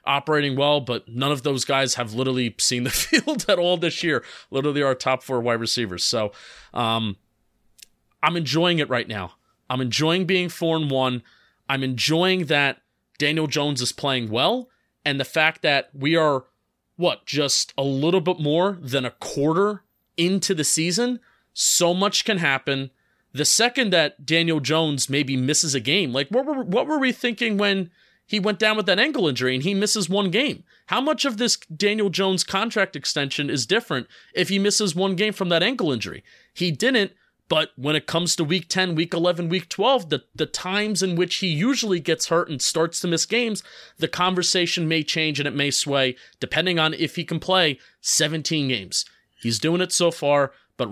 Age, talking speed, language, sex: 30-49, 190 wpm, English, male